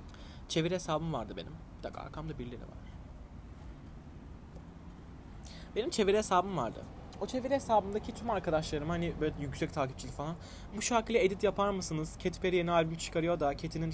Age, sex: 20-39, male